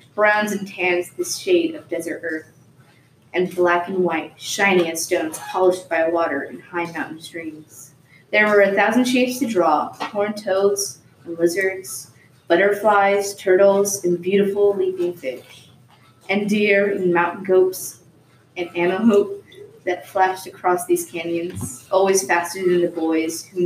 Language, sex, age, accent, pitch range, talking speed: English, female, 20-39, American, 165-205 Hz, 145 wpm